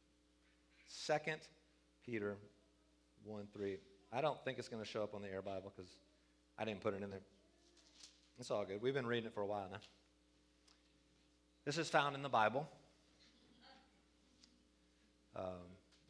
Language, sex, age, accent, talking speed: English, male, 30-49, American, 155 wpm